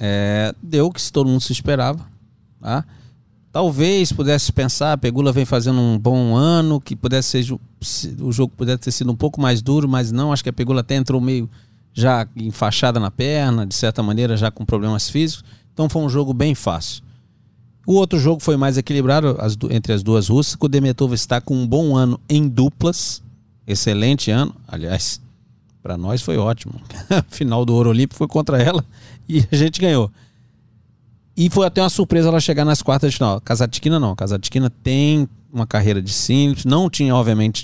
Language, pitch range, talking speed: Portuguese, 115-145 Hz, 190 wpm